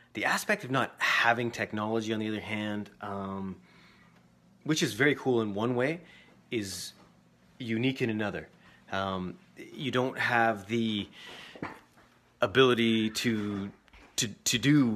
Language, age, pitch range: English, 30-49, 95-115 Hz